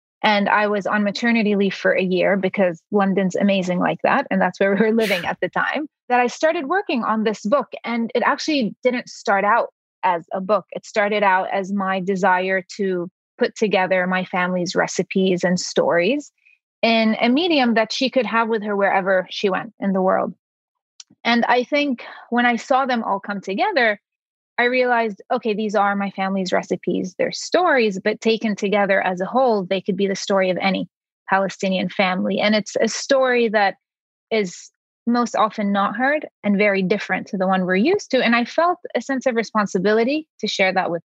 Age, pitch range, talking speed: 30-49, 190-235 Hz, 195 wpm